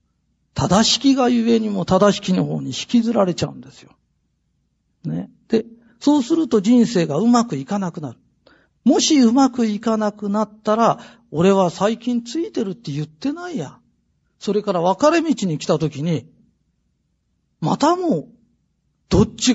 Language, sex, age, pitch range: Japanese, male, 40-59, 160-240 Hz